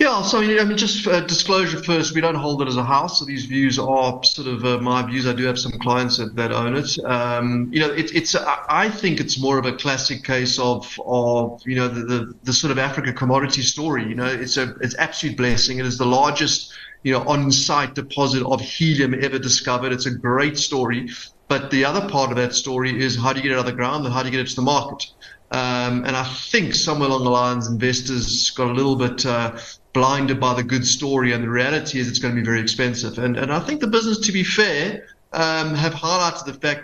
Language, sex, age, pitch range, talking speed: English, male, 30-49, 125-145 Hz, 250 wpm